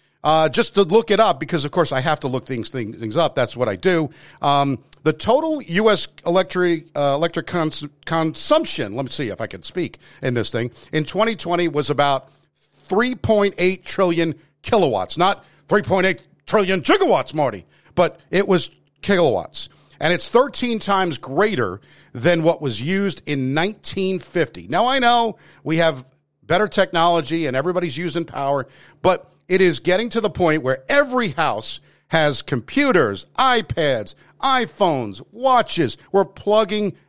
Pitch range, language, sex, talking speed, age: 150-200 Hz, English, male, 150 wpm, 50-69